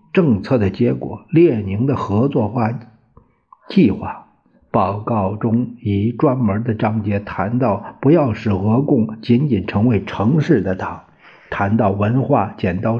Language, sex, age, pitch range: Chinese, male, 50-69, 100-130 Hz